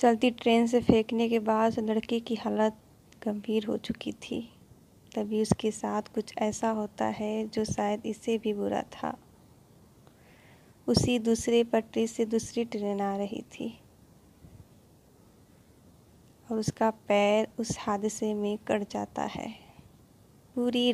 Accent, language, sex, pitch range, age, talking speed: native, Hindi, female, 210-230 Hz, 20-39, 130 wpm